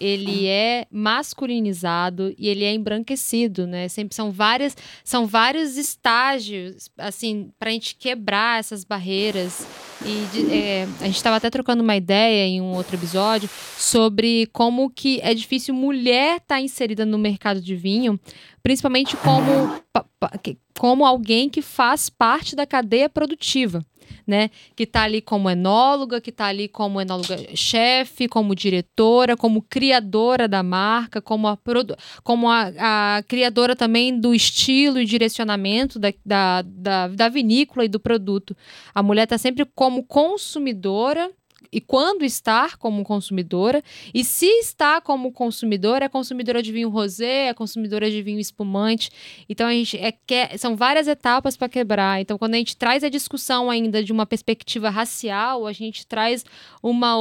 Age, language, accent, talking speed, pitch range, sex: 10-29, Portuguese, Brazilian, 150 wpm, 210-255 Hz, female